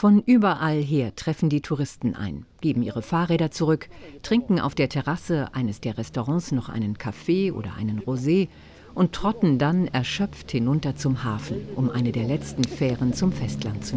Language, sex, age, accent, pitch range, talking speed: German, female, 50-69, German, 125-170 Hz, 170 wpm